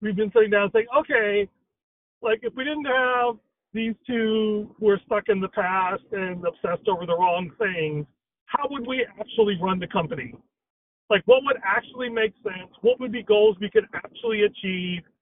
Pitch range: 185-225 Hz